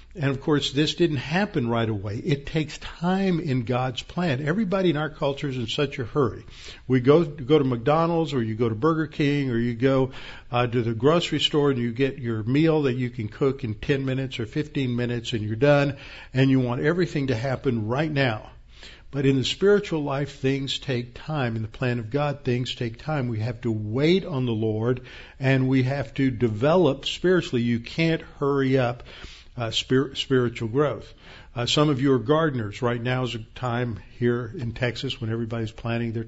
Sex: male